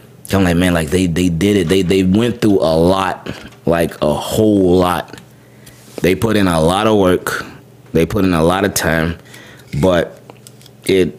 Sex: male